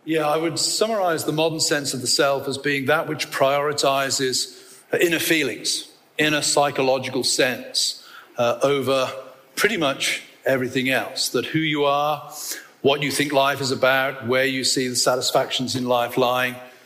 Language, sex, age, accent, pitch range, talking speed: English, male, 40-59, British, 130-150 Hz, 155 wpm